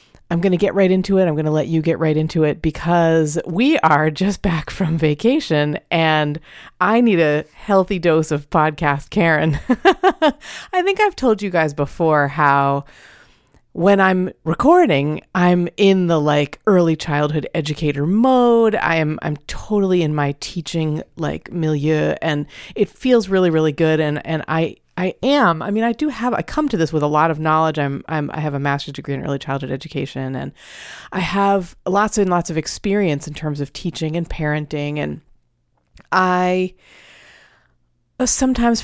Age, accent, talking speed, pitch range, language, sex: 30-49, American, 175 wpm, 150-195 Hz, English, female